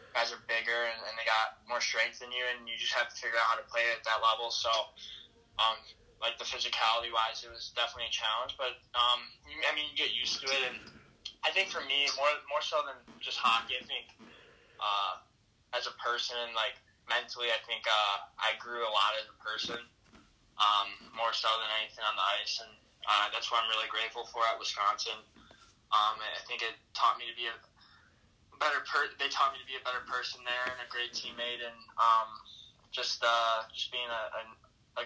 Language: English